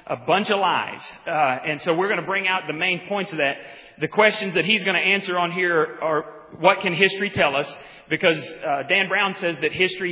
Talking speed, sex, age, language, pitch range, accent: 230 wpm, male, 40-59, English, 155-195 Hz, American